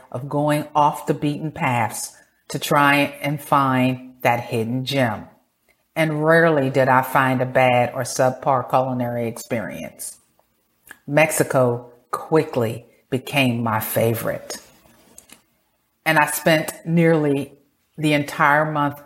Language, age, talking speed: English, 40-59, 115 wpm